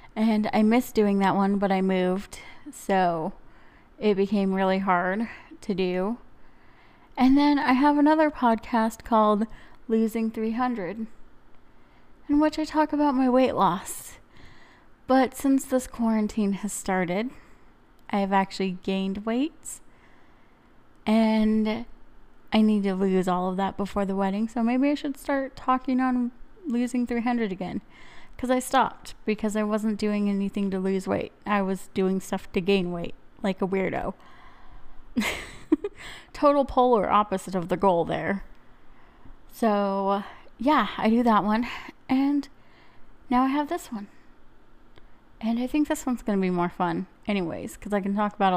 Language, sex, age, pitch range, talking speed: English, female, 20-39, 195-250 Hz, 145 wpm